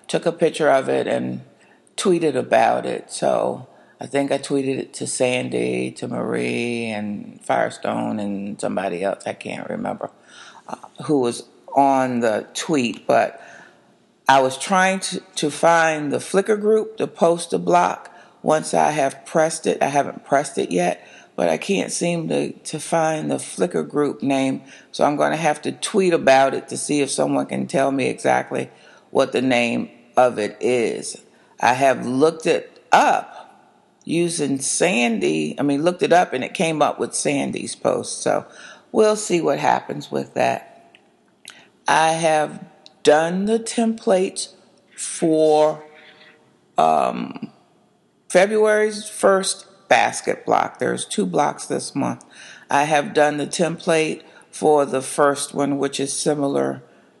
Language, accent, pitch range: English, American, 130-180 Hz